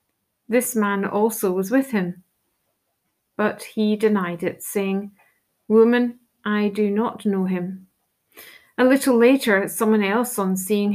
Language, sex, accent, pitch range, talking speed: English, female, British, 190-225 Hz, 130 wpm